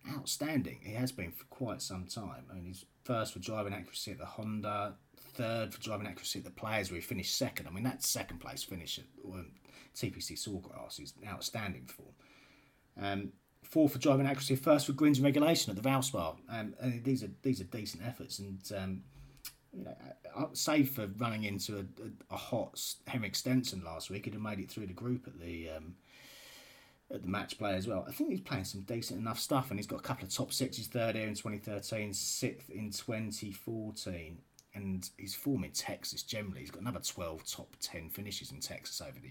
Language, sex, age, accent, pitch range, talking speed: English, male, 30-49, British, 95-130 Hz, 205 wpm